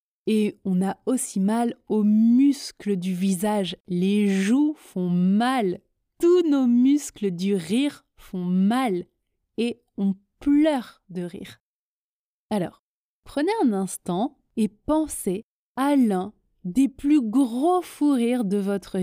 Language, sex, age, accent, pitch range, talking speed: French, female, 20-39, French, 200-285 Hz, 125 wpm